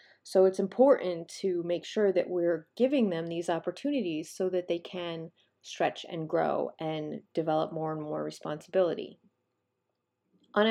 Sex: female